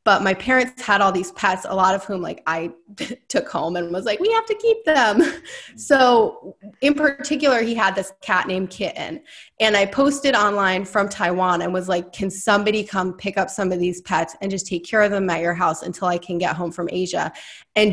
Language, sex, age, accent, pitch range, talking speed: English, female, 20-39, American, 185-245 Hz, 225 wpm